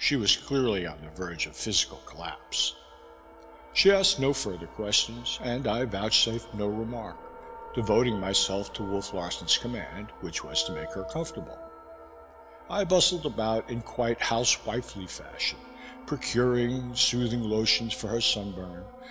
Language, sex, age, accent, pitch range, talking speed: English, male, 60-79, American, 105-150 Hz, 140 wpm